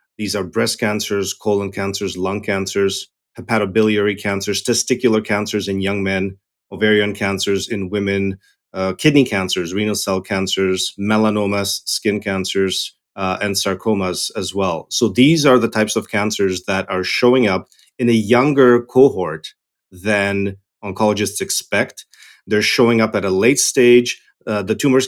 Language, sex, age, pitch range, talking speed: English, male, 30-49, 100-115 Hz, 145 wpm